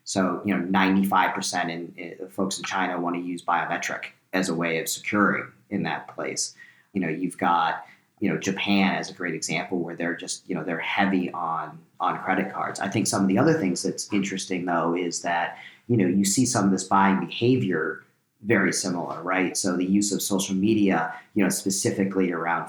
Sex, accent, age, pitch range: male, American, 40-59, 85-100 Hz